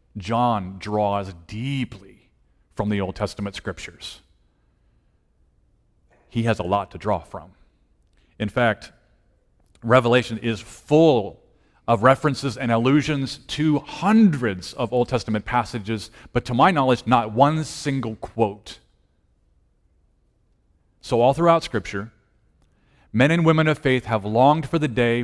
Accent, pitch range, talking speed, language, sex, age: American, 110-145 Hz, 125 wpm, English, male, 30-49